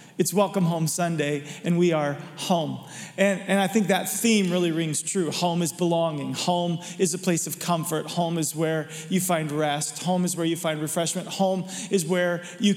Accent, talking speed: American, 195 wpm